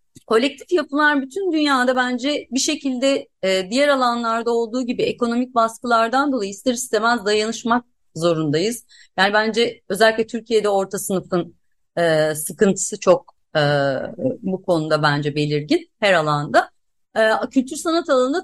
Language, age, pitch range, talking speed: Turkish, 30-49, 185-270 Hz, 115 wpm